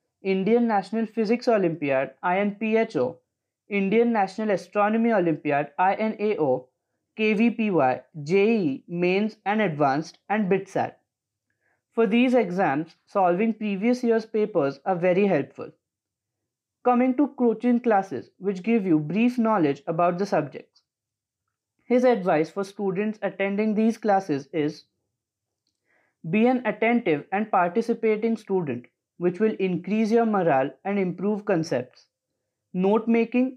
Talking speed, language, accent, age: 115 wpm, English, Indian, 20-39